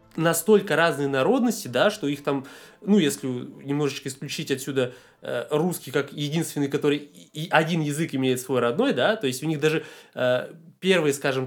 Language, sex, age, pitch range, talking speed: Russian, male, 20-39, 140-190 Hz, 160 wpm